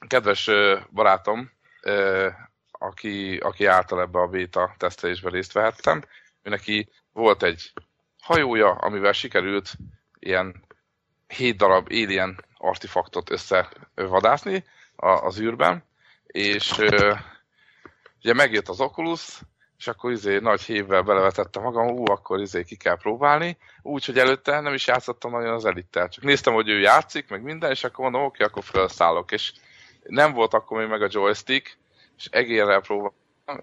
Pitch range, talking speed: 100-125 Hz, 135 wpm